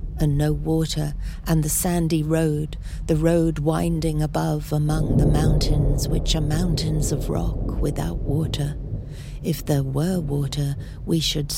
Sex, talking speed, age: female, 140 wpm, 60-79